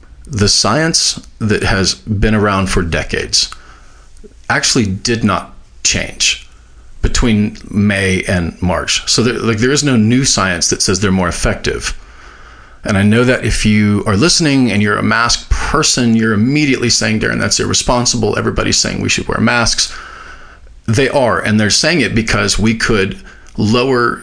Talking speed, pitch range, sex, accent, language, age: 155 wpm, 95-115 Hz, male, American, English, 40-59